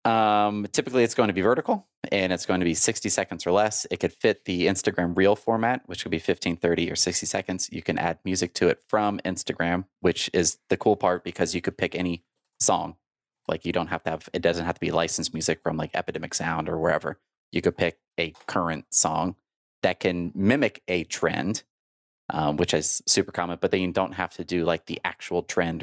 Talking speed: 225 wpm